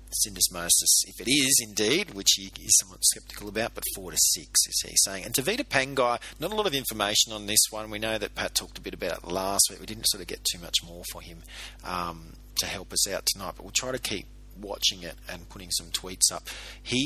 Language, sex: English, male